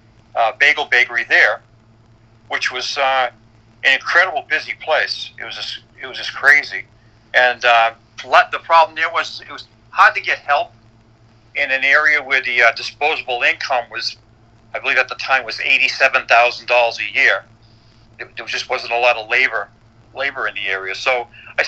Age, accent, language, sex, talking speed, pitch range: 50-69, American, English, male, 165 wpm, 115-135 Hz